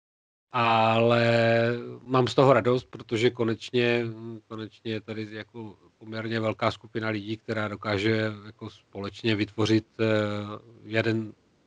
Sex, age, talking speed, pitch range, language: male, 40-59, 110 wpm, 110-125 Hz, Czech